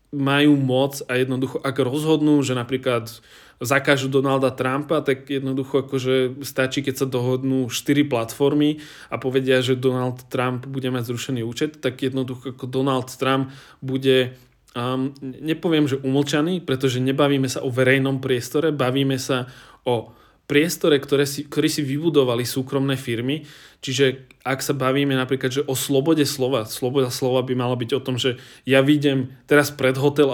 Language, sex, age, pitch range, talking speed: Czech, male, 20-39, 130-140 Hz, 155 wpm